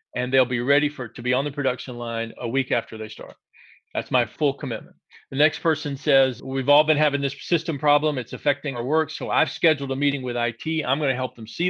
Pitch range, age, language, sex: 125-155 Hz, 40-59, English, male